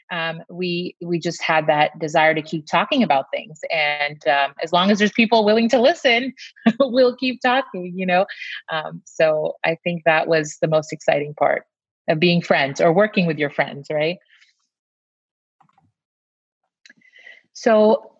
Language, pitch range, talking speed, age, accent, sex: English, 165-195 Hz, 155 wpm, 30-49, American, female